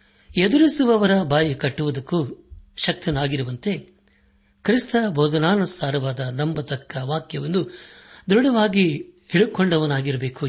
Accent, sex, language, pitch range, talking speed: native, male, Kannada, 135-180 Hz, 55 wpm